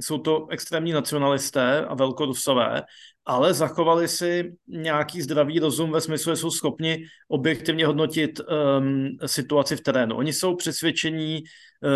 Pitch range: 135-160 Hz